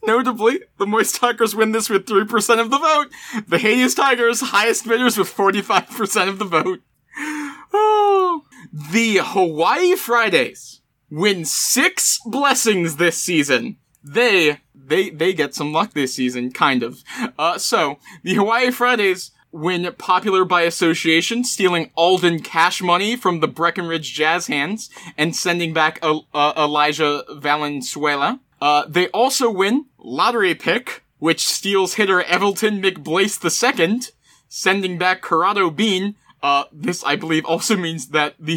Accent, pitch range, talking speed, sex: American, 155-225 Hz, 140 wpm, male